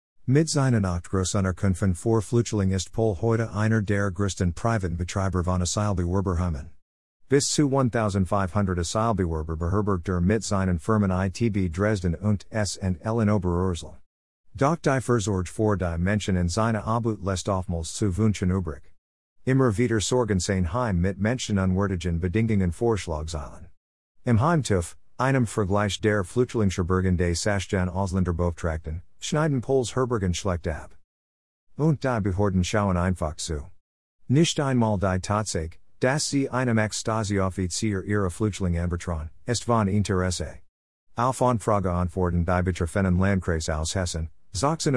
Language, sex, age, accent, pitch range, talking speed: English, male, 50-69, American, 90-110 Hz, 130 wpm